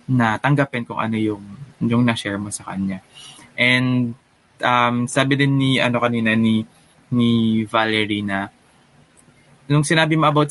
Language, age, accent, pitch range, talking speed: Filipino, 20-39, native, 110-140 Hz, 145 wpm